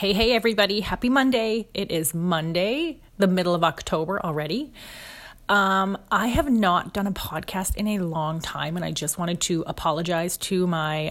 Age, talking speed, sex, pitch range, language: 30-49, 175 wpm, female, 165-205 Hz, English